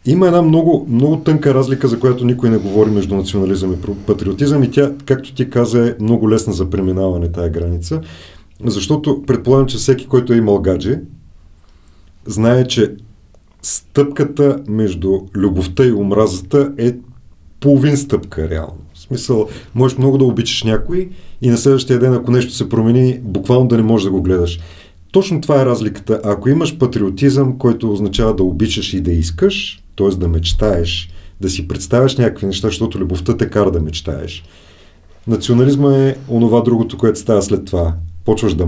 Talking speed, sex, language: 165 wpm, male, Bulgarian